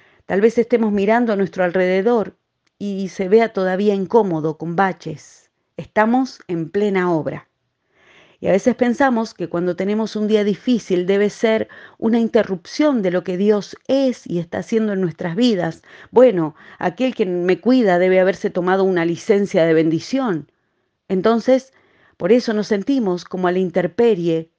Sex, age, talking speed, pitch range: female, 40-59, 155 wpm, 175-220 Hz